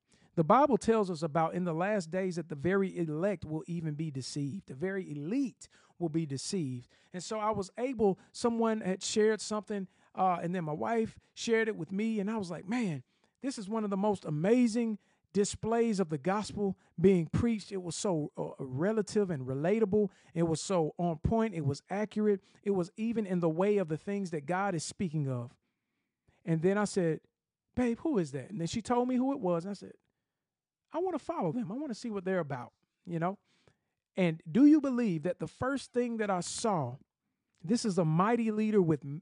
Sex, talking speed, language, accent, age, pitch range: male, 210 wpm, English, American, 40-59, 165-220 Hz